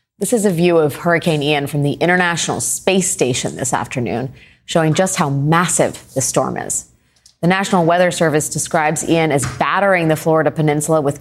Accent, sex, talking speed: American, female, 175 wpm